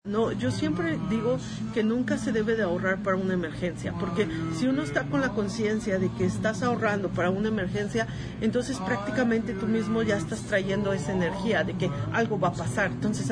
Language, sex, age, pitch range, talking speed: Spanish, female, 40-59, 180-215 Hz, 195 wpm